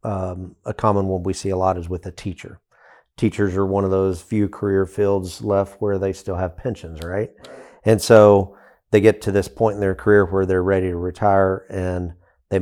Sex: male